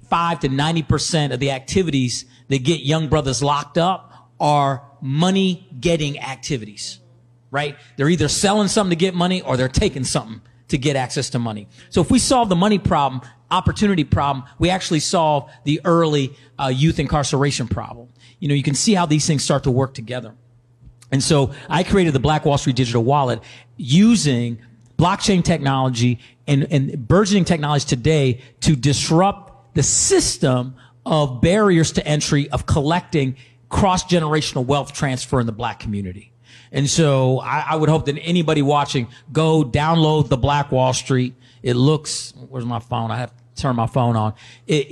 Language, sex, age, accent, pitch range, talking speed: English, male, 40-59, American, 125-160 Hz, 165 wpm